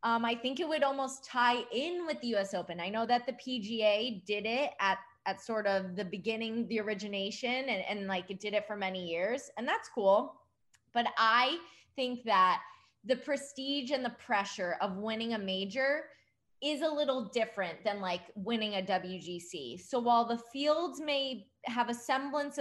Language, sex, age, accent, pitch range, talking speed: English, female, 20-39, American, 195-250 Hz, 185 wpm